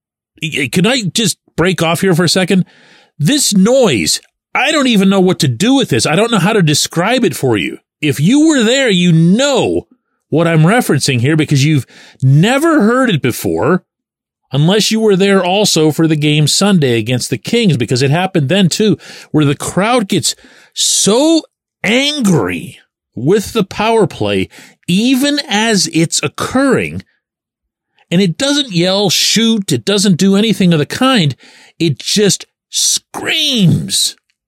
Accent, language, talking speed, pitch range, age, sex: American, English, 160 wpm, 155-215 Hz, 40-59, male